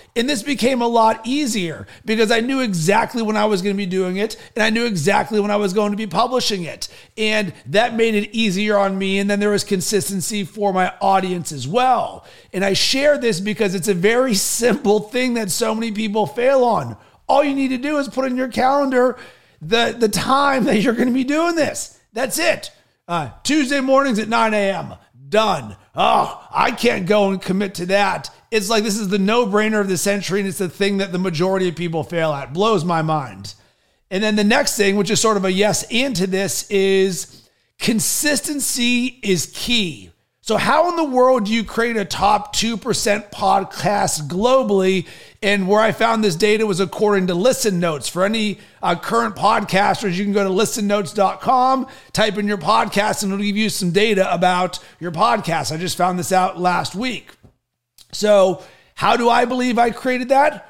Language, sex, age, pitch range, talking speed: English, male, 40-59, 190-230 Hz, 200 wpm